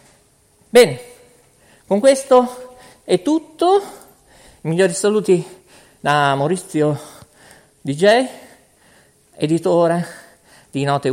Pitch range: 130-210 Hz